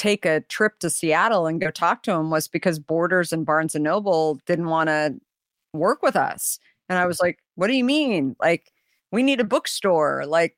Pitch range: 150-180 Hz